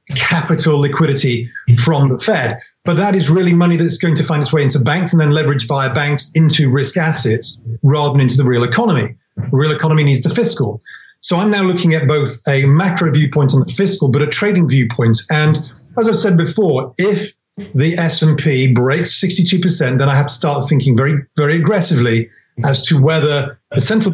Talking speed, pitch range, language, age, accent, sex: 195 wpm, 135-165 Hz, English, 40-59, British, male